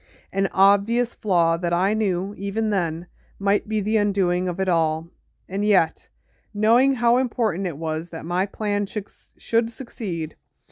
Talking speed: 150 wpm